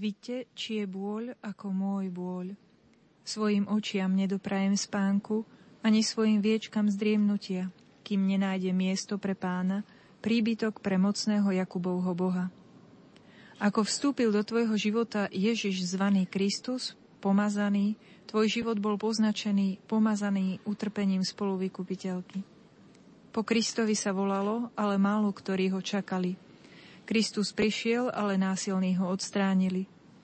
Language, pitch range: Slovak, 195-215 Hz